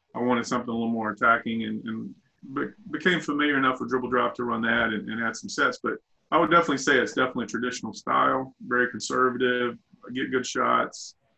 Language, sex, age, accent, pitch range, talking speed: English, male, 30-49, American, 115-130 Hz, 195 wpm